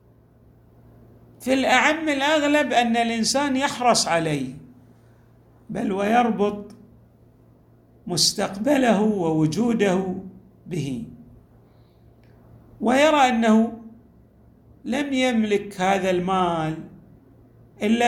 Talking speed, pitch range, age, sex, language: 65 wpm, 160-240 Hz, 50-69, male, Arabic